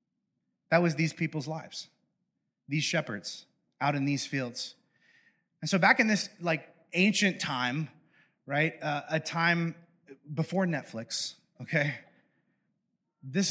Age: 30-49